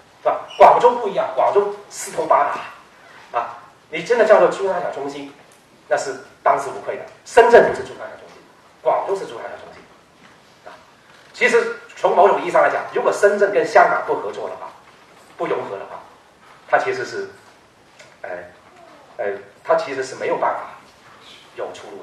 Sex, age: male, 40-59